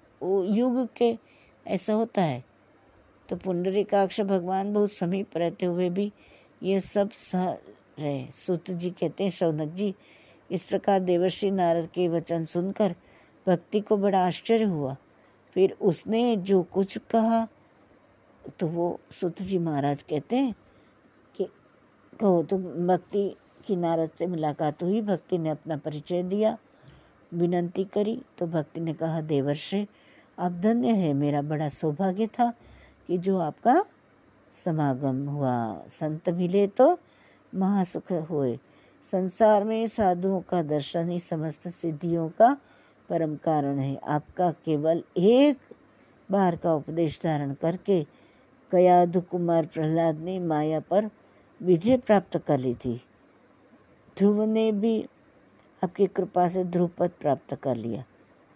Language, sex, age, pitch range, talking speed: Hindi, female, 60-79, 160-200 Hz, 130 wpm